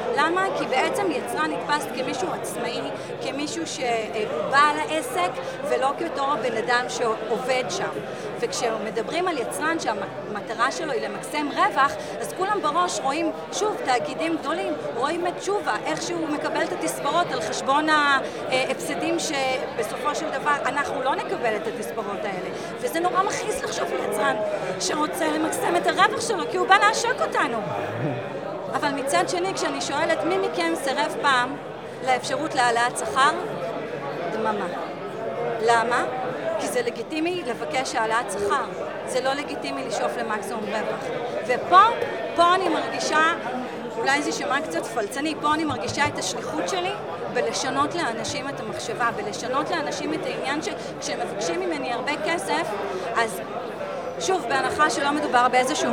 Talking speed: 135 wpm